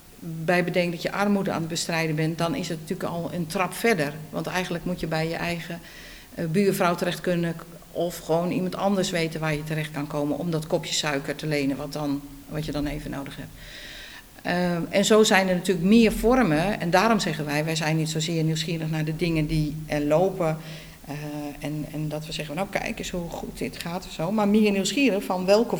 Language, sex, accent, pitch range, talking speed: Dutch, female, Dutch, 160-200 Hz, 220 wpm